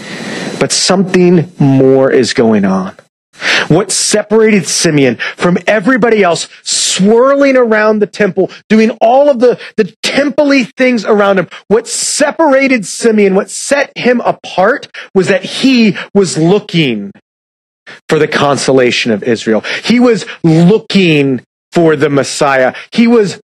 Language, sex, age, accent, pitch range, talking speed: English, male, 30-49, American, 145-215 Hz, 130 wpm